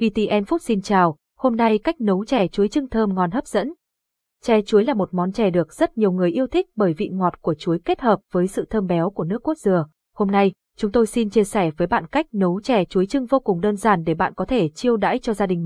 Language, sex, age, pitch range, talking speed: Vietnamese, female, 20-39, 185-240 Hz, 265 wpm